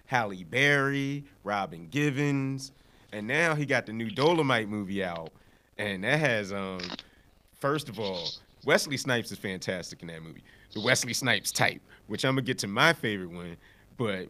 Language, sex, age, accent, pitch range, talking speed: English, male, 30-49, American, 105-150 Hz, 170 wpm